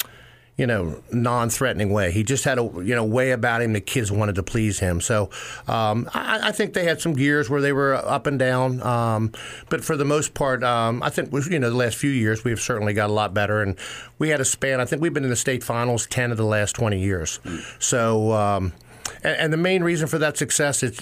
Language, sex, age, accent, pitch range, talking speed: English, male, 50-69, American, 105-130 Hz, 240 wpm